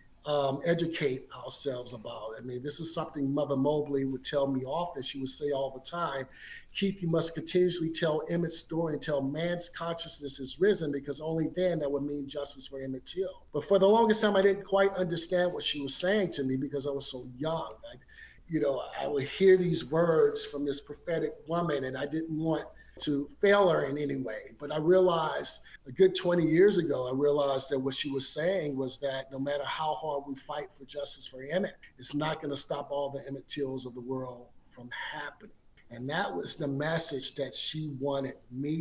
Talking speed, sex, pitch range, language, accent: 210 wpm, male, 135-170 Hz, English, American